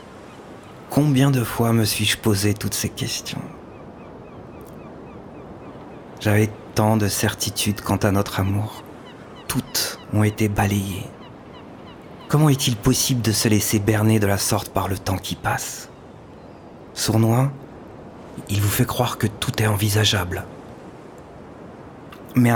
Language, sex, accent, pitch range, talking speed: French, male, French, 100-125 Hz, 120 wpm